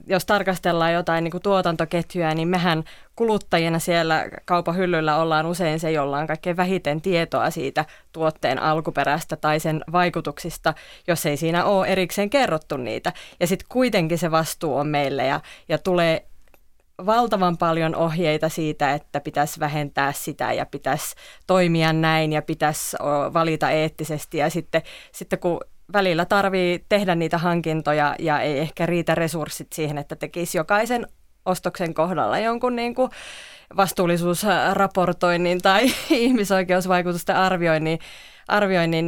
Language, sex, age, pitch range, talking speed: Finnish, female, 20-39, 155-190 Hz, 125 wpm